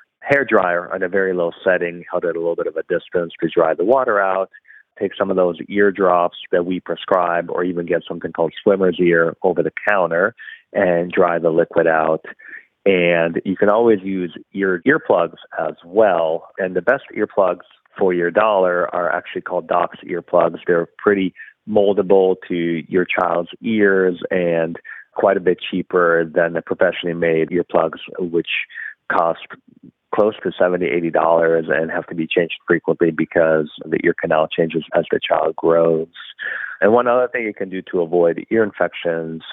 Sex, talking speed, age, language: male, 175 wpm, 30-49, English